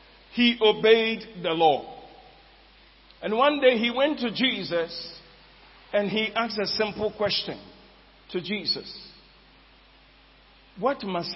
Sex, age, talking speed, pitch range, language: male, 50-69, 110 wpm, 135-200 Hz, English